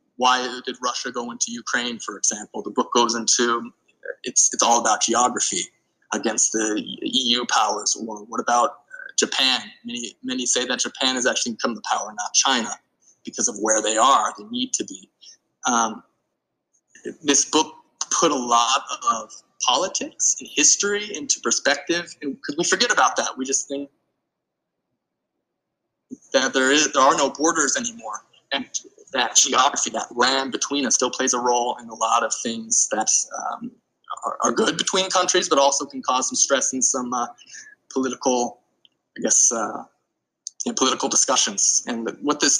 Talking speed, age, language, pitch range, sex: 160 wpm, 20-39, English, 130-210 Hz, male